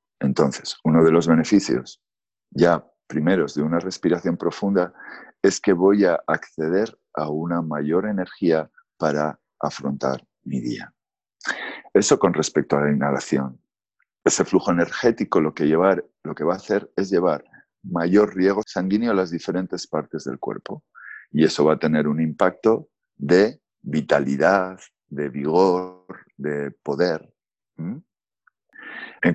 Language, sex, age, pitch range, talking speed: Spanish, male, 50-69, 80-115 Hz, 130 wpm